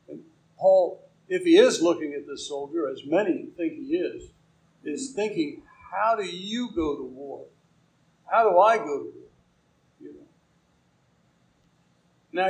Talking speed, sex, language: 135 wpm, male, English